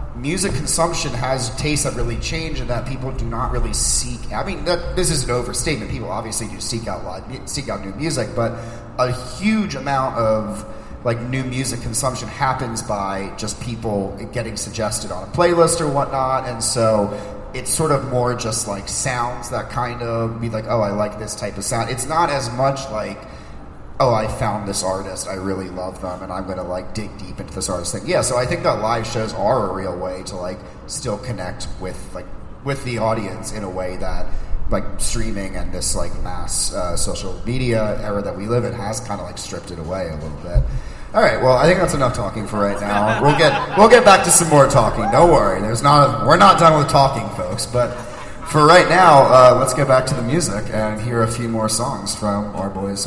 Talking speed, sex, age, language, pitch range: 220 wpm, male, 30-49, English, 100-130 Hz